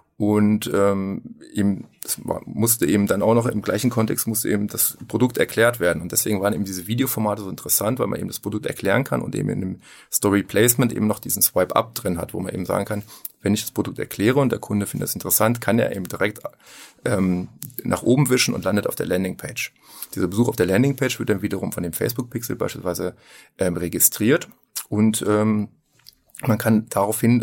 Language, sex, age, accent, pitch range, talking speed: German, male, 30-49, German, 100-115 Hz, 200 wpm